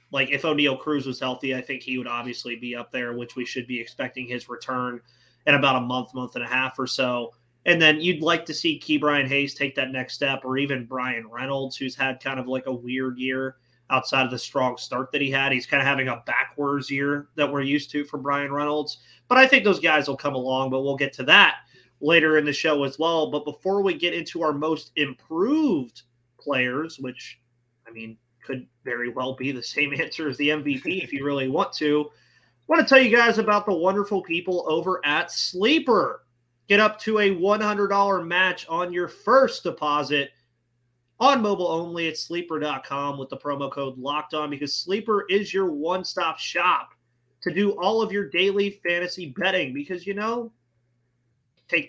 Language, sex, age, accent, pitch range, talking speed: English, male, 30-49, American, 130-175 Hz, 205 wpm